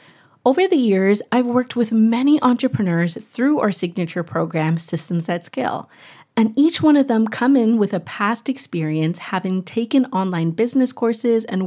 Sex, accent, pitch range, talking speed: female, American, 180-250 Hz, 165 wpm